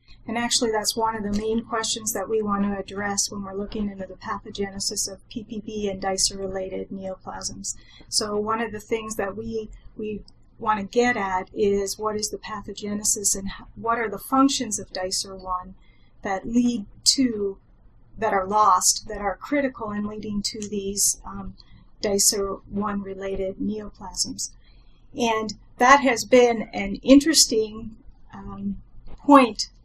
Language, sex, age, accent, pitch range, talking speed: English, female, 40-59, American, 195-225 Hz, 145 wpm